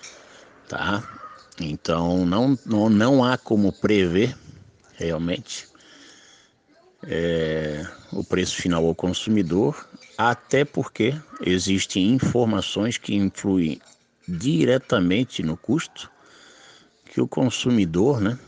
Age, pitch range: 60-79, 90-105 Hz